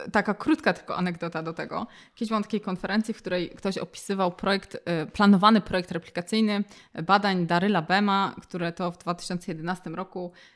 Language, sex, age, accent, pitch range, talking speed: Polish, female, 20-39, native, 175-205 Hz, 140 wpm